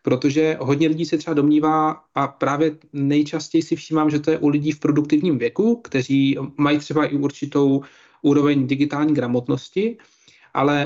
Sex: male